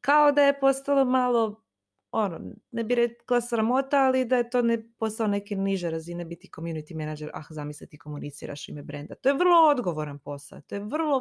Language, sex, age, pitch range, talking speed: Croatian, female, 20-39, 170-240 Hz, 185 wpm